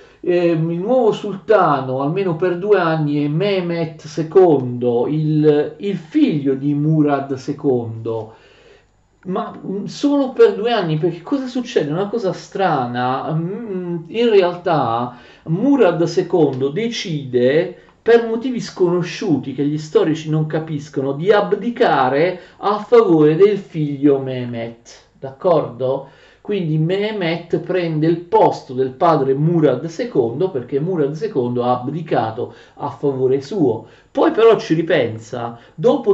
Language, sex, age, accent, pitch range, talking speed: Italian, male, 50-69, native, 140-190 Hz, 115 wpm